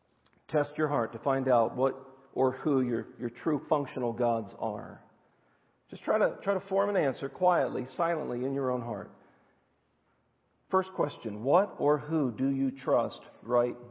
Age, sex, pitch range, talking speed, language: 50-69, male, 120-170 Hz, 165 wpm, English